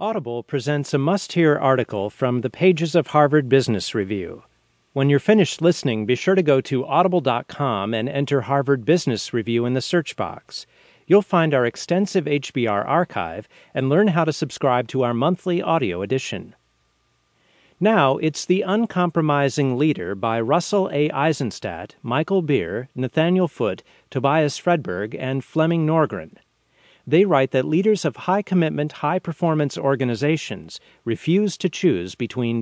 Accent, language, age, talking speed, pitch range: American, English, 40-59, 140 wpm, 120-160 Hz